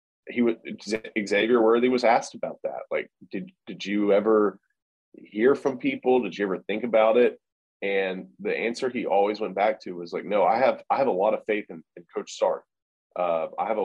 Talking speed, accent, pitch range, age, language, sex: 210 wpm, American, 95-115 Hz, 30-49, English, male